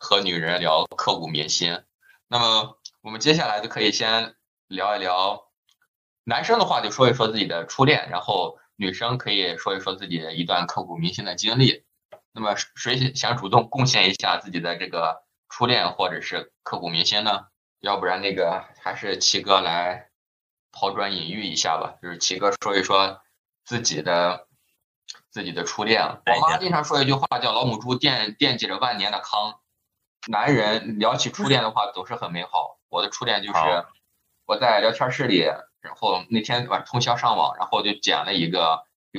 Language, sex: Chinese, male